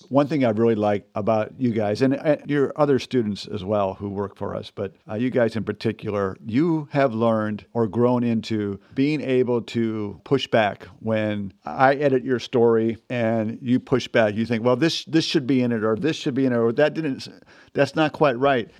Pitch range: 110-140 Hz